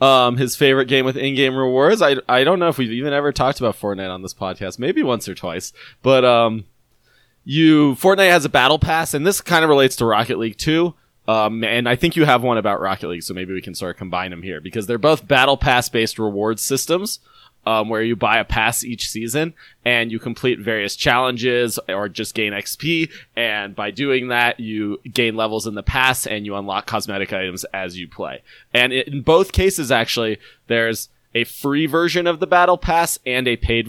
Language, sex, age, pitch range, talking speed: English, male, 20-39, 110-140 Hz, 210 wpm